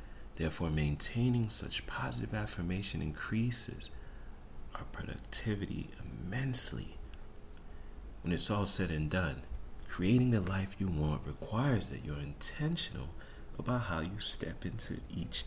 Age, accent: 40-59, American